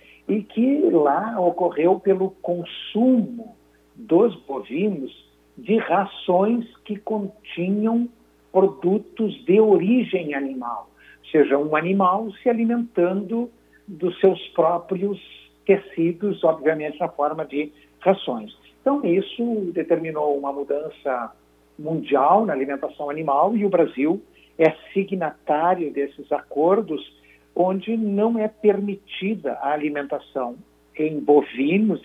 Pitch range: 145-205 Hz